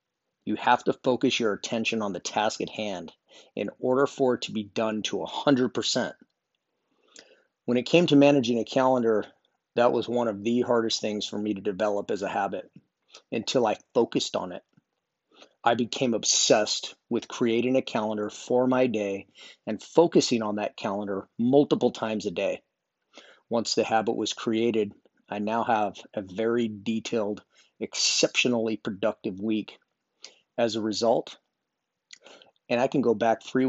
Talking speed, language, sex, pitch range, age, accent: 155 wpm, English, male, 105-125 Hz, 40-59, American